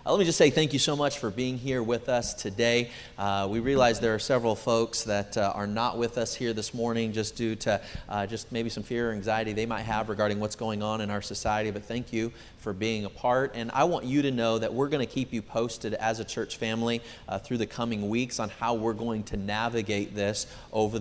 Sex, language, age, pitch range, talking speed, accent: male, English, 30-49, 105-120 Hz, 250 wpm, American